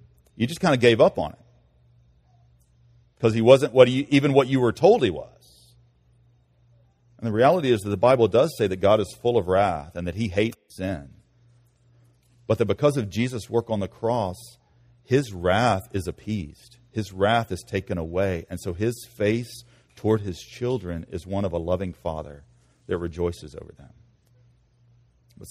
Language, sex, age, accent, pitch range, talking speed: English, male, 40-59, American, 90-125 Hz, 175 wpm